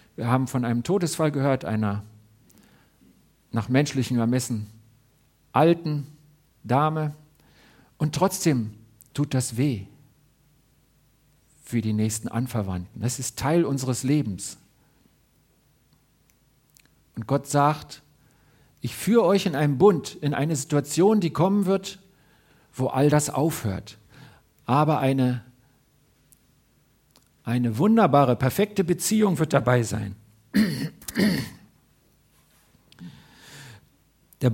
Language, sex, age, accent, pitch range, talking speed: German, male, 50-69, German, 115-150 Hz, 95 wpm